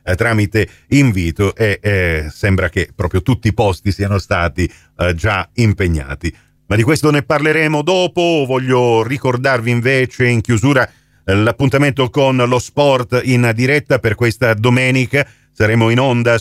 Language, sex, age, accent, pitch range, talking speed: Italian, male, 40-59, native, 100-130 Hz, 145 wpm